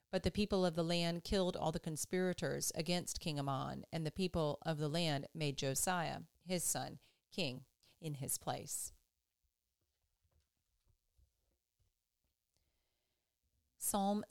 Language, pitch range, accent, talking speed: English, 145-185 Hz, American, 115 wpm